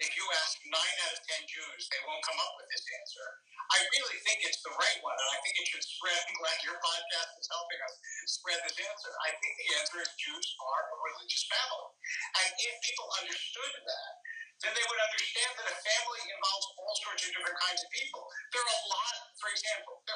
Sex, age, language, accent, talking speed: male, 50-69, English, American, 225 wpm